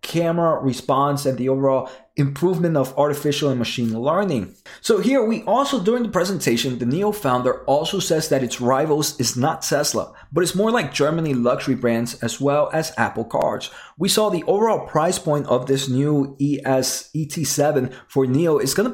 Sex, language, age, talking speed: male, English, 30-49, 175 wpm